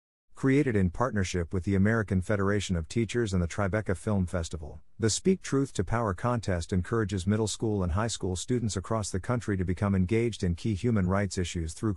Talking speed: 195 wpm